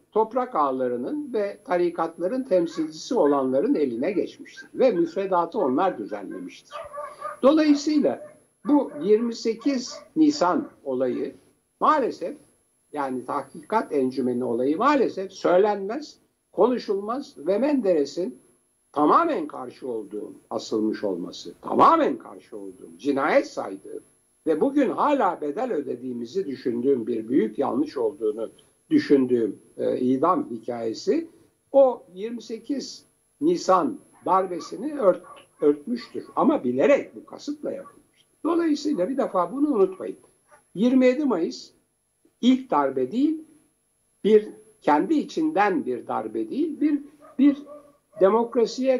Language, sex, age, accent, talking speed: Turkish, male, 60-79, native, 100 wpm